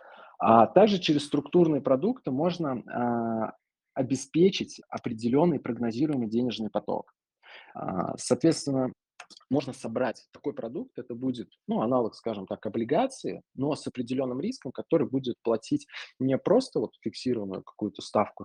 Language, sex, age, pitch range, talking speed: Russian, male, 20-39, 110-135 Hz, 125 wpm